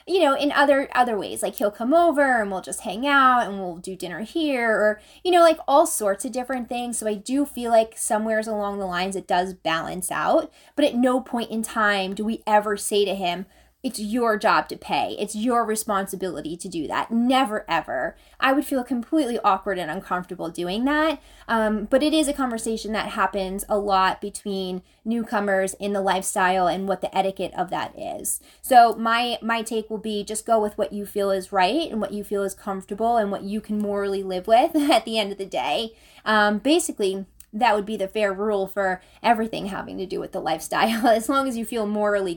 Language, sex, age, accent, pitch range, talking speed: English, female, 20-39, American, 195-235 Hz, 215 wpm